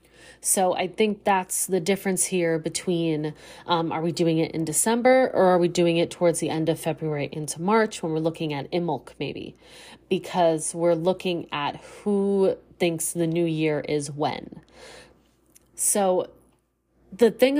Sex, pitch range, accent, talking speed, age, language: female, 165-205 Hz, American, 160 wpm, 30-49, English